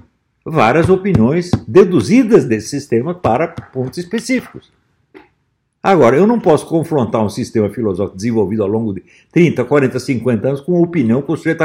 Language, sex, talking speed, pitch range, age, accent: Portuguese, male, 155 wpm, 125-185 Hz, 60-79, Brazilian